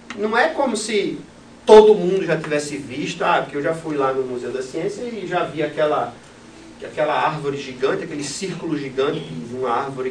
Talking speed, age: 190 wpm, 40-59